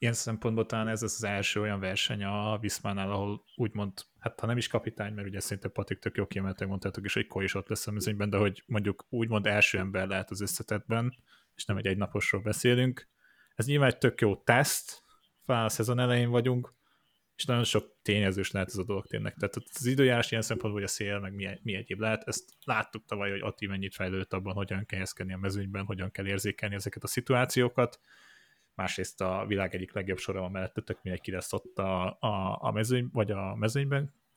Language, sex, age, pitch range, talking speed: Hungarian, male, 30-49, 100-120 Hz, 200 wpm